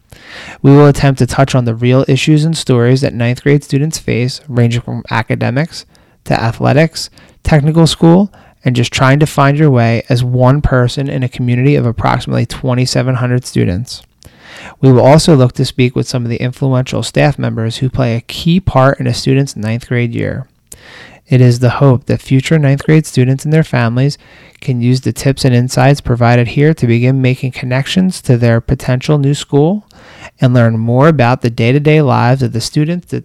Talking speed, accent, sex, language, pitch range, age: 190 wpm, American, male, English, 120-145 Hz, 20-39